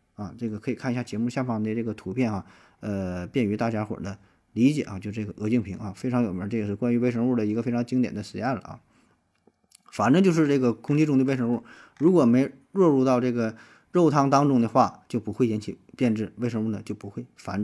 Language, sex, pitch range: Chinese, male, 110-135 Hz